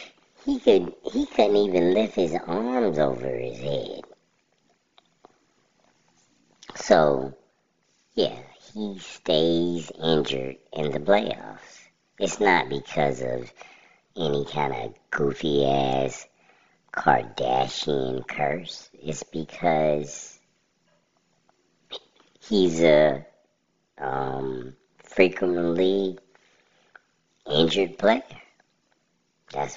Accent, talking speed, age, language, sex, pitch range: American, 75 wpm, 50-69, English, male, 70-95 Hz